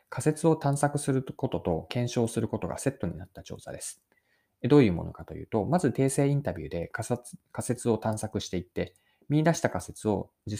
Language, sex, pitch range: Japanese, male, 90-140 Hz